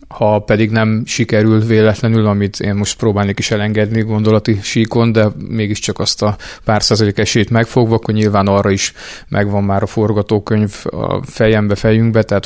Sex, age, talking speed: male, 30-49, 160 wpm